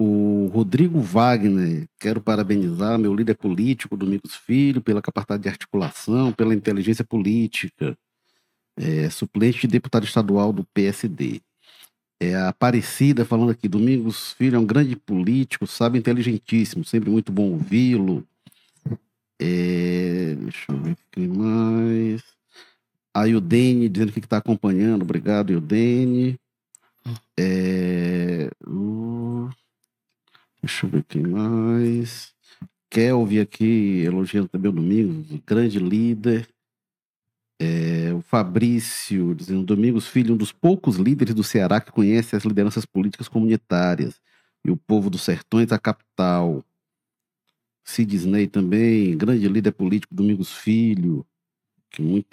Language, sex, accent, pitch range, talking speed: Portuguese, male, Brazilian, 95-120 Hz, 120 wpm